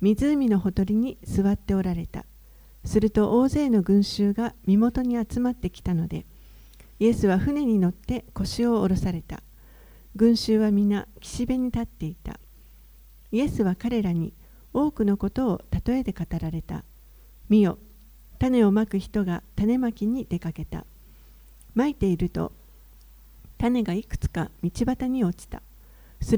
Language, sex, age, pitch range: Japanese, female, 50-69, 175-230 Hz